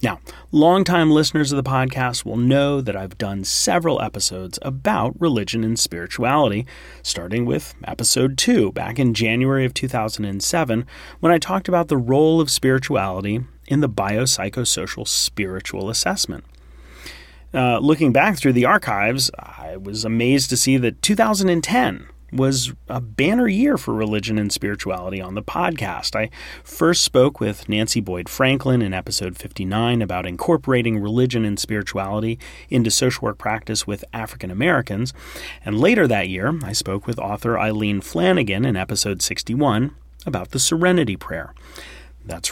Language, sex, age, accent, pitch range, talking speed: English, male, 30-49, American, 95-140 Hz, 145 wpm